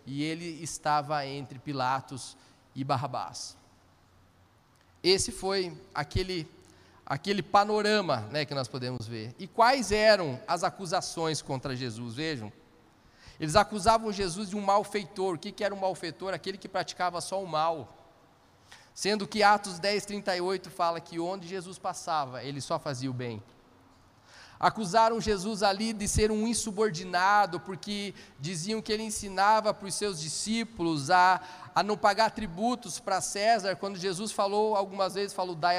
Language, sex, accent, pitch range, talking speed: Portuguese, male, Brazilian, 140-200 Hz, 150 wpm